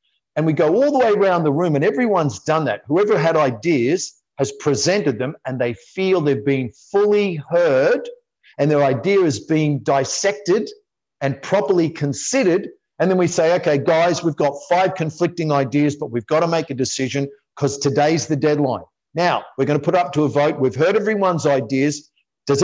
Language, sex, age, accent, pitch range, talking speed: English, male, 50-69, Australian, 135-175 Hz, 190 wpm